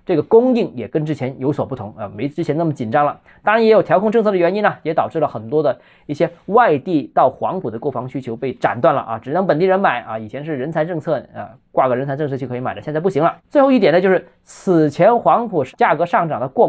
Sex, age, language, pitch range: male, 20-39, Chinese, 130-190 Hz